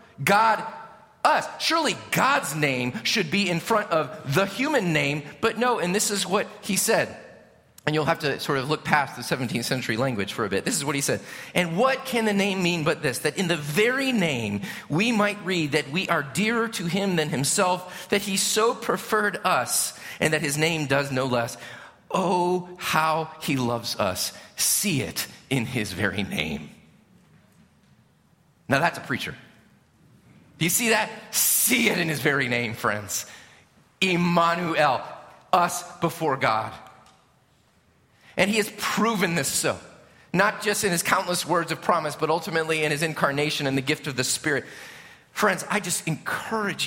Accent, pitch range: American, 145-205 Hz